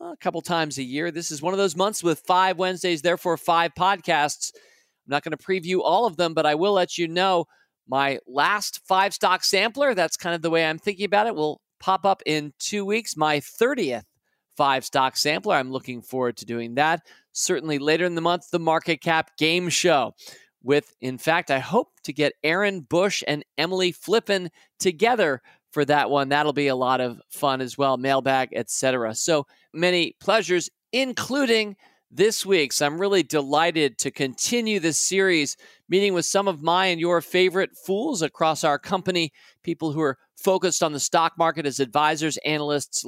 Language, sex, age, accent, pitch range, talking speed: English, male, 40-59, American, 150-195 Hz, 185 wpm